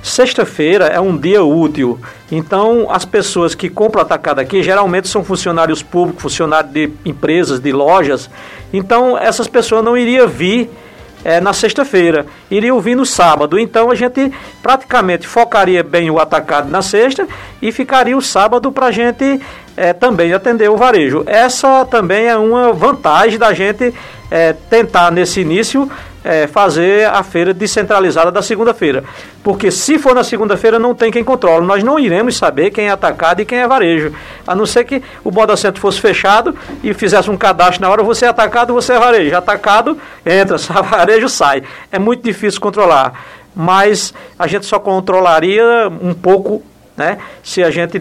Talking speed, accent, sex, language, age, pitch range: 165 wpm, Brazilian, male, Portuguese, 60-79, 175-235 Hz